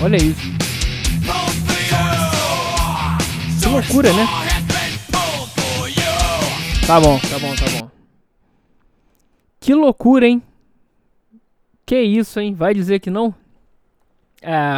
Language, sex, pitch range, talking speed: Portuguese, male, 145-205 Hz, 90 wpm